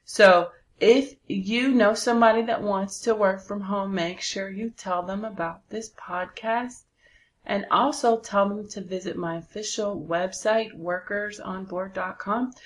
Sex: female